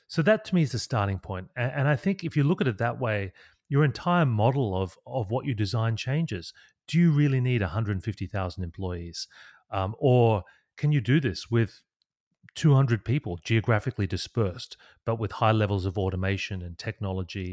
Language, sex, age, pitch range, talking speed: English, male, 30-49, 95-130 Hz, 180 wpm